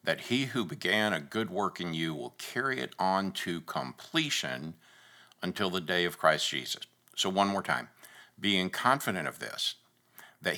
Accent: American